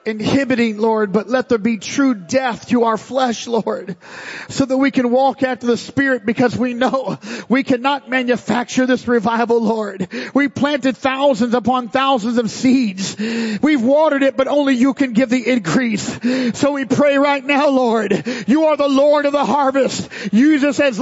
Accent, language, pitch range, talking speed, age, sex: American, English, 255-325 Hz, 175 wpm, 40-59, male